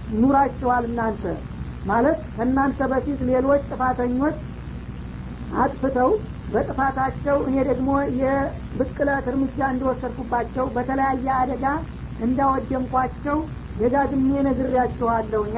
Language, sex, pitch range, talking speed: Amharic, female, 245-270 Hz, 75 wpm